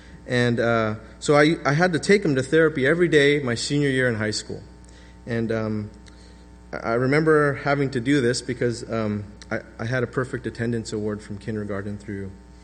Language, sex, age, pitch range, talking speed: English, male, 30-49, 105-165 Hz, 185 wpm